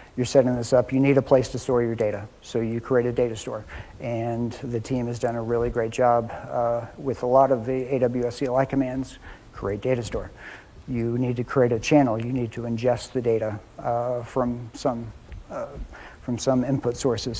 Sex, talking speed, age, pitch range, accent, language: male, 200 wpm, 50-69, 115-130 Hz, American, English